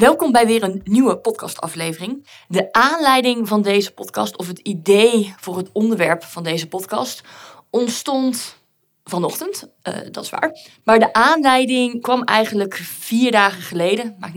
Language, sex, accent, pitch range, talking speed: Dutch, female, Belgian, 170-225 Hz, 145 wpm